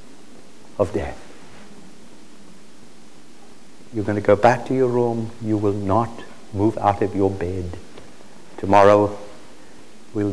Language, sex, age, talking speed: Portuguese, male, 60-79, 115 wpm